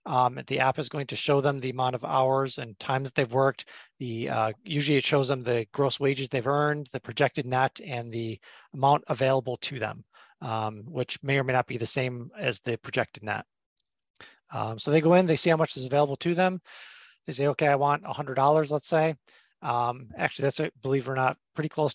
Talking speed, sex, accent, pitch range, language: 220 wpm, male, American, 125-145 Hz, English